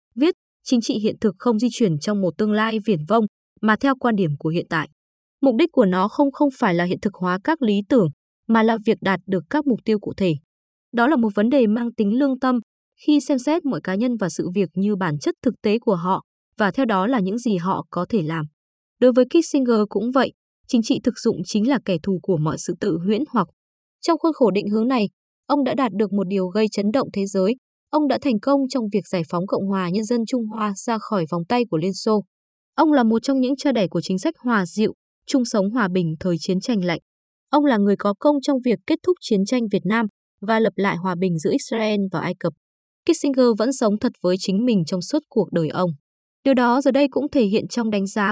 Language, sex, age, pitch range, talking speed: Vietnamese, female, 20-39, 190-255 Hz, 250 wpm